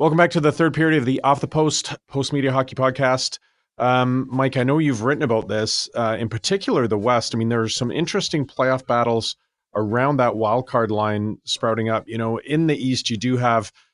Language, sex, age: English, male, 30-49